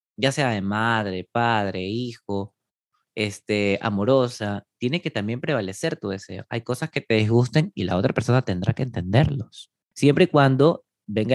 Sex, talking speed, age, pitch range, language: male, 160 wpm, 20-39, 100-135 Hz, Spanish